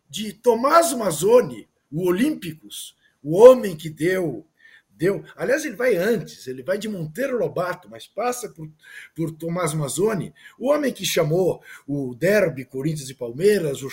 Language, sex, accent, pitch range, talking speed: Portuguese, male, Brazilian, 155-230 Hz, 150 wpm